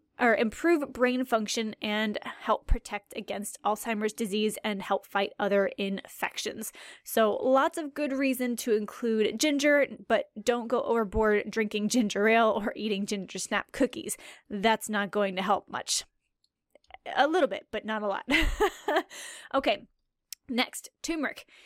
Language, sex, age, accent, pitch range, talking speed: English, female, 10-29, American, 210-265 Hz, 140 wpm